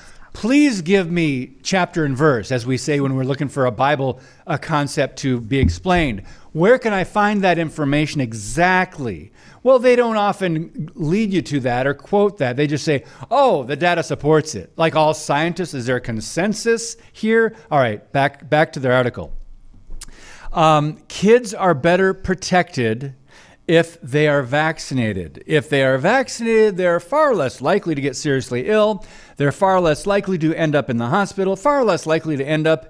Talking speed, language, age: 180 wpm, English, 50-69